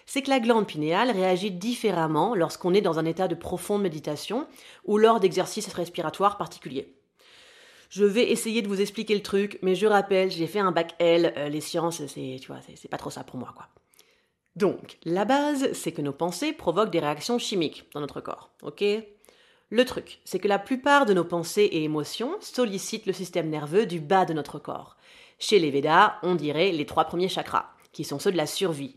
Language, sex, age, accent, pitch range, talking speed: French, female, 30-49, French, 165-210 Hz, 205 wpm